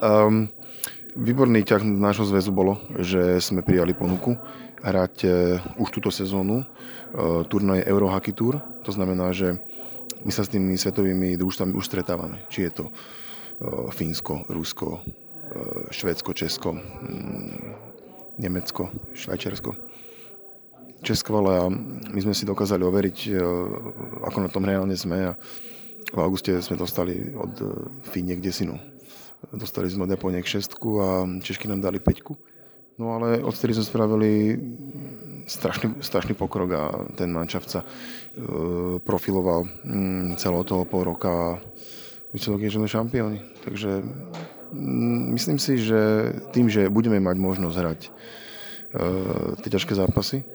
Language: Slovak